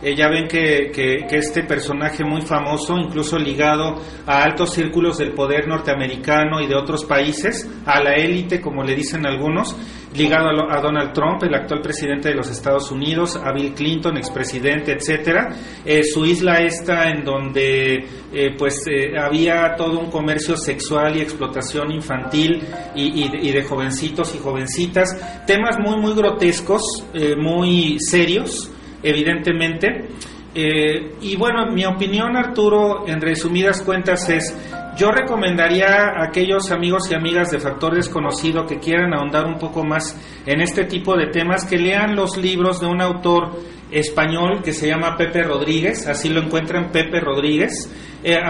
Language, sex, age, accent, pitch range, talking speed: Spanish, male, 40-59, Mexican, 150-175 Hz, 160 wpm